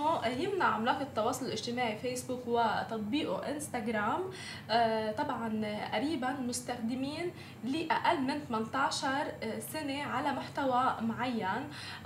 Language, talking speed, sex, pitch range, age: Arabic, 85 wpm, female, 225-290 Hz, 20-39